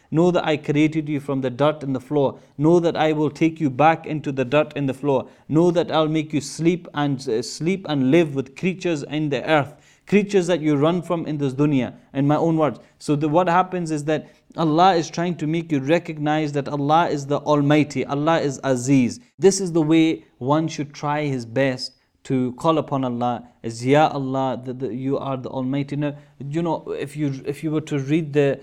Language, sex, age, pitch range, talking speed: English, male, 30-49, 140-170 Hz, 225 wpm